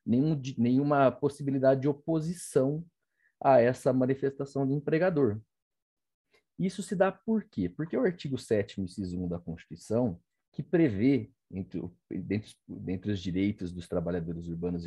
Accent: Brazilian